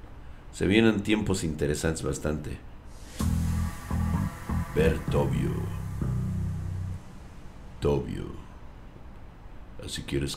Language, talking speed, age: Spanish, 60 wpm, 60-79